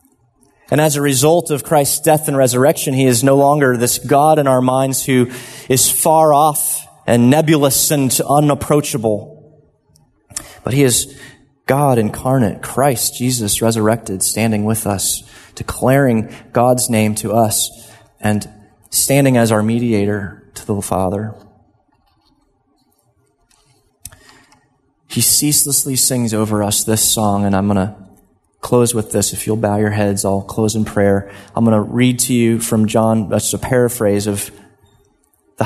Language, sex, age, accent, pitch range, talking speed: English, male, 30-49, American, 105-130 Hz, 145 wpm